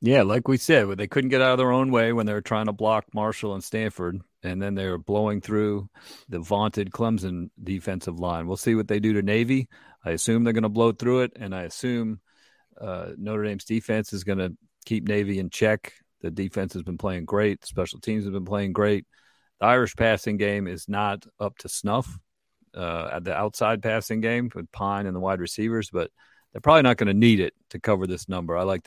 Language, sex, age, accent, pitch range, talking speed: English, male, 40-59, American, 95-115 Hz, 225 wpm